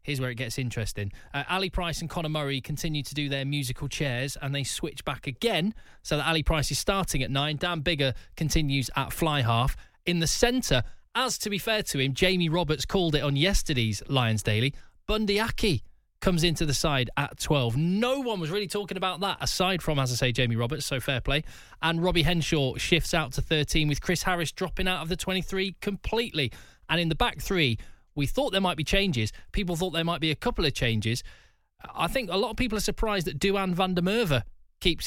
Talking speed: 215 wpm